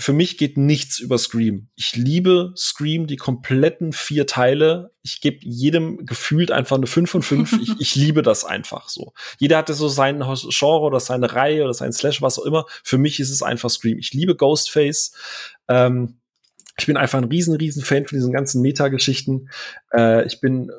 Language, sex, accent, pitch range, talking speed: German, male, German, 125-150 Hz, 190 wpm